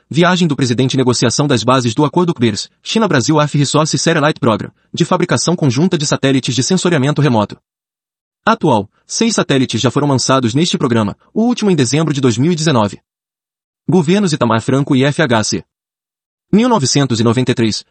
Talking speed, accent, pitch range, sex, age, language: 145 wpm, Brazilian, 125-170 Hz, male, 30-49, Portuguese